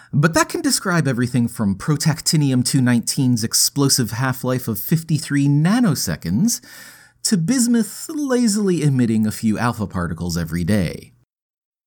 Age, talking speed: 30-49, 110 wpm